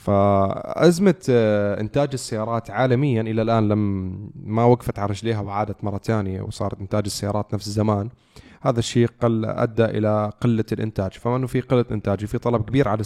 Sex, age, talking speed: male, 20-39, 165 wpm